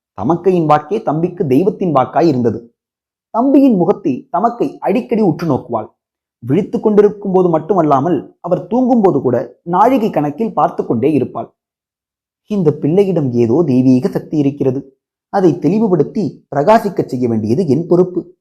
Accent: native